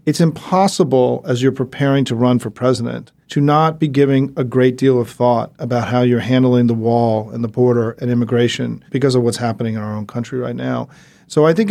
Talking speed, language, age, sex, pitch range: 215 wpm, English, 40-59, male, 120-145 Hz